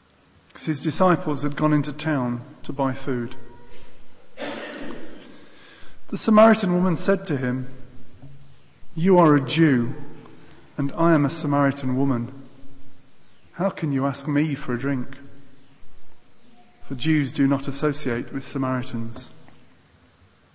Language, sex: English, male